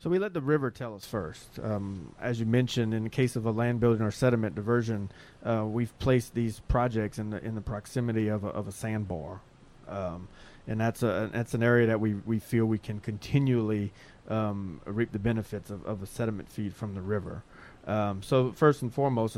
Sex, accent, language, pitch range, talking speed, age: male, American, English, 100-120 Hz, 210 wpm, 30-49